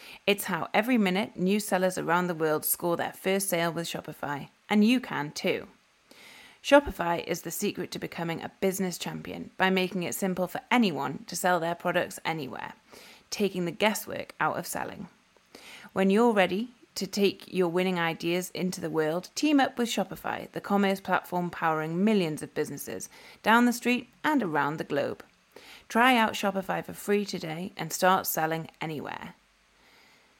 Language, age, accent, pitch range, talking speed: English, 30-49, British, 170-210 Hz, 165 wpm